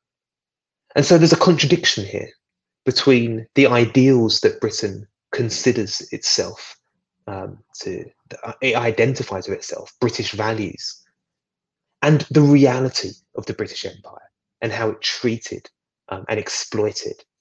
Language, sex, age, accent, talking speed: English, male, 20-39, British, 125 wpm